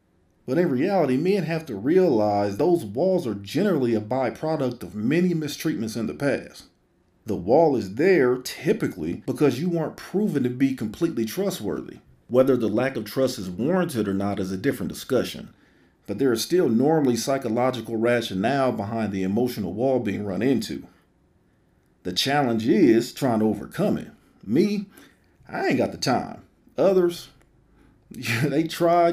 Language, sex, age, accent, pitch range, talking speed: English, male, 40-59, American, 105-150 Hz, 155 wpm